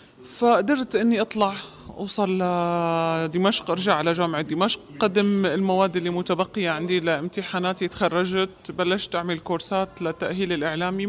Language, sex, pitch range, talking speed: Arabic, male, 165-205 Hz, 115 wpm